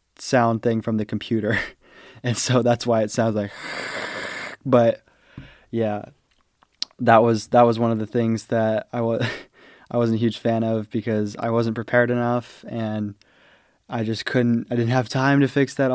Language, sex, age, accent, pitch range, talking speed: English, male, 20-39, American, 110-125 Hz, 175 wpm